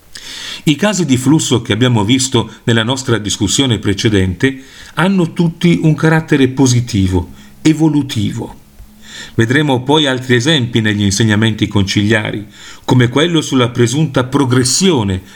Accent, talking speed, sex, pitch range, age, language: native, 115 wpm, male, 115-150 Hz, 40-59, Italian